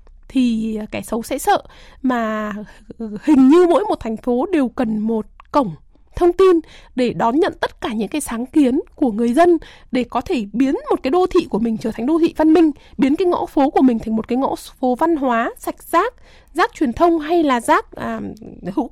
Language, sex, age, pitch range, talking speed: Vietnamese, female, 20-39, 250-345 Hz, 215 wpm